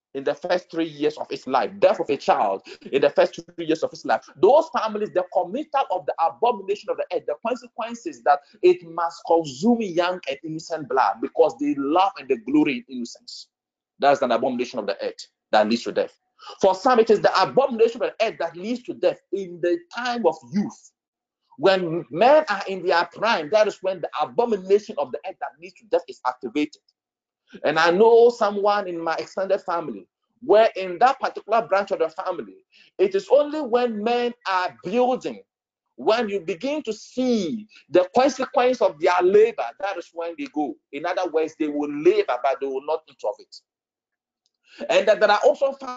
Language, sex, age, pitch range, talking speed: English, male, 40-59, 180-285 Hz, 200 wpm